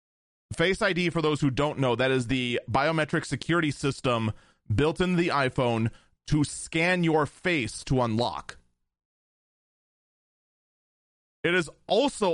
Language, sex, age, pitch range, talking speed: English, male, 30-49, 105-165 Hz, 125 wpm